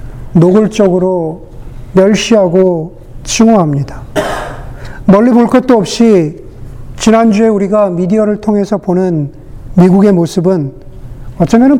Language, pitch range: Korean, 130-215 Hz